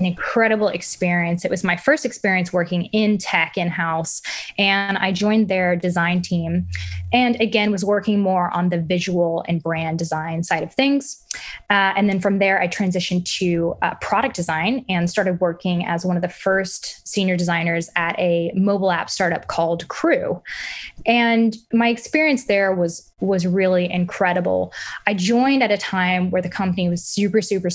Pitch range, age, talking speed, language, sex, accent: 175-205 Hz, 10-29, 170 wpm, English, female, American